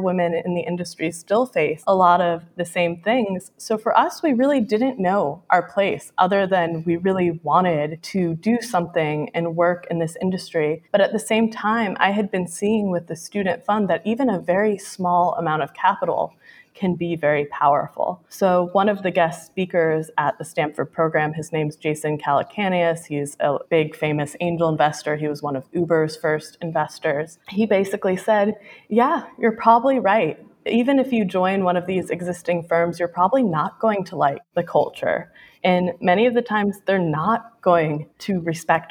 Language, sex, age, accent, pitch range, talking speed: English, female, 20-39, American, 165-205 Hz, 185 wpm